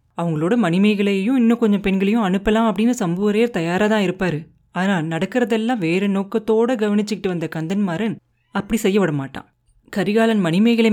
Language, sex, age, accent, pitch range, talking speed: Tamil, female, 30-49, native, 170-215 Hz, 125 wpm